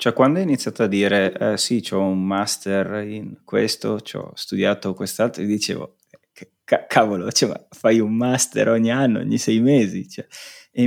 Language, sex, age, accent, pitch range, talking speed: Italian, male, 30-49, native, 100-120 Hz, 165 wpm